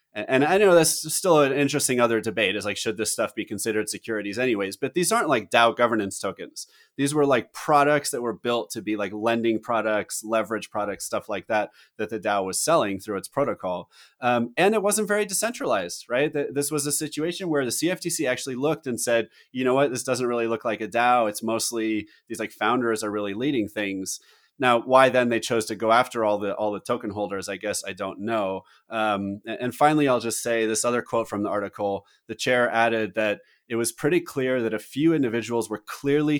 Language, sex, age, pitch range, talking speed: English, male, 30-49, 110-135 Hz, 220 wpm